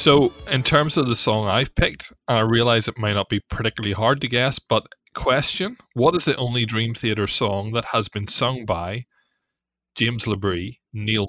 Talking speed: 190 wpm